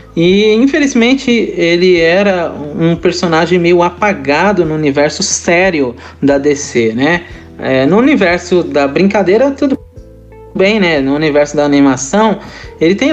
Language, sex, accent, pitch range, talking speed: Portuguese, male, Brazilian, 145-210 Hz, 125 wpm